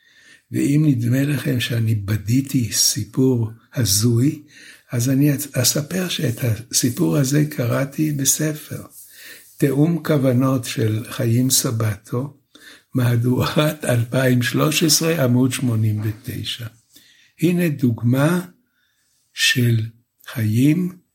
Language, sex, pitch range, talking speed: Hebrew, male, 120-145 Hz, 80 wpm